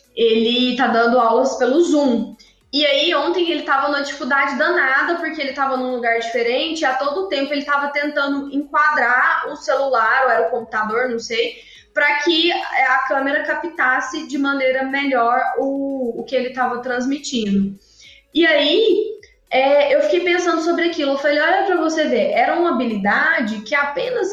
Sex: female